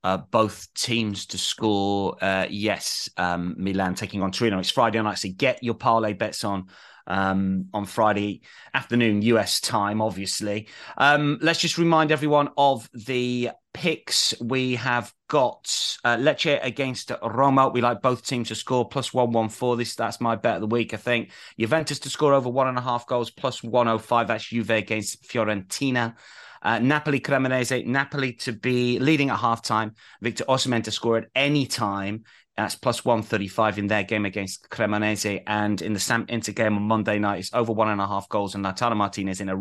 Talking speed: 185 wpm